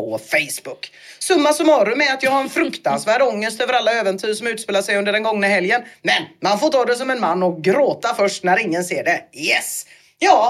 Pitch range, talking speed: 180-275 Hz, 210 wpm